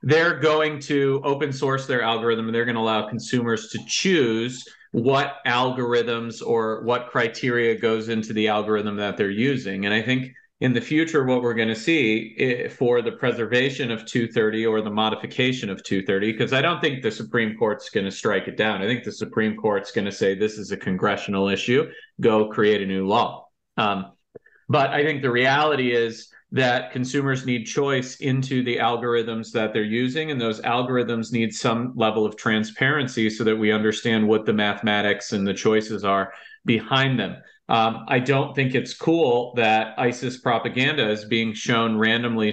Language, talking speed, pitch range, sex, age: English, 180 wpm, 110-130 Hz, male, 40-59